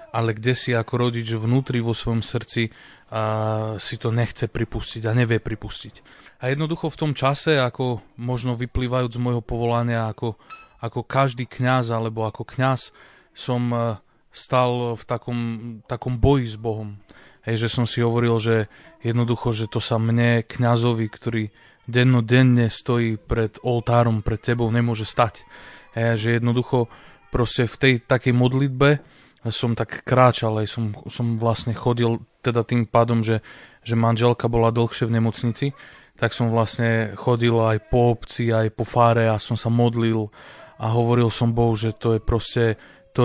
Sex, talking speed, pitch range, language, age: male, 160 wpm, 115-125 Hz, Slovak, 30-49